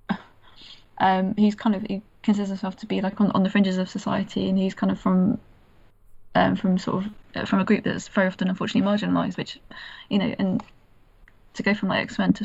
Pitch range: 190-215 Hz